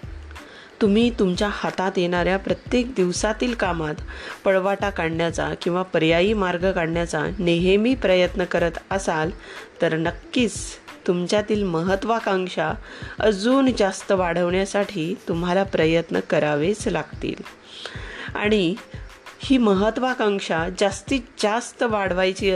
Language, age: Marathi, 30-49